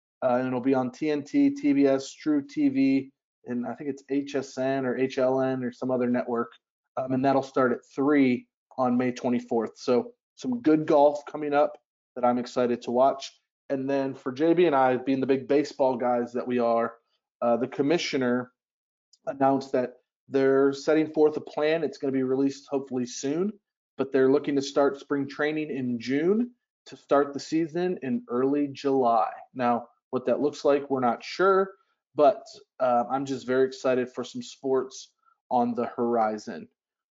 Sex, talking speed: male, 175 wpm